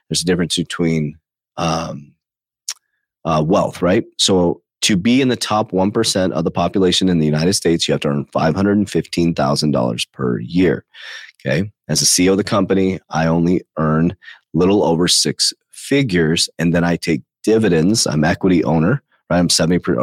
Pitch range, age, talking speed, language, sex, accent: 80-95 Hz, 30-49, 160 wpm, English, male, American